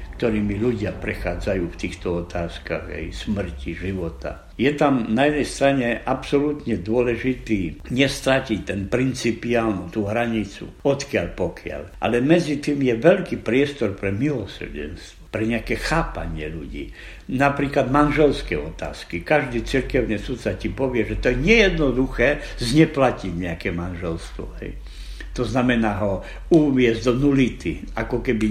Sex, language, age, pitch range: male, Slovak, 60-79, 95-140 Hz